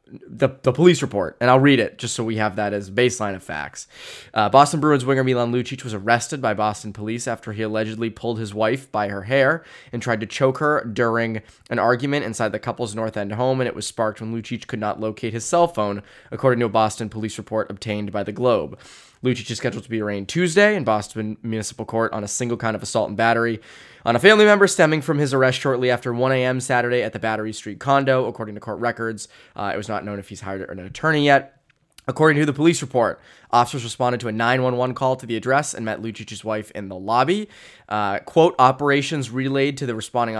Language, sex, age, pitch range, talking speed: English, male, 20-39, 110-130 Hz, 225 wpm